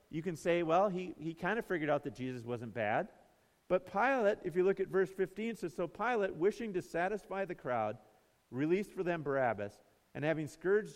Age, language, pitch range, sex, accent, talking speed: 50-69, English, 125-175 Hz, male, American, 210 wpm